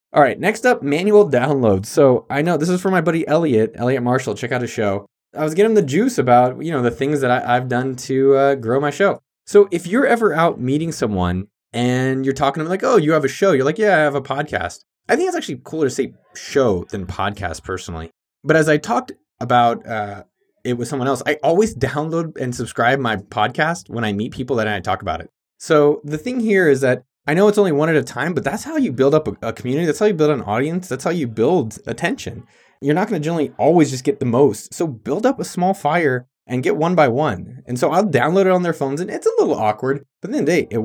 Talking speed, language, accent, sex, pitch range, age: 255 wpm, English, American, male, 125-170 Hz, 20-39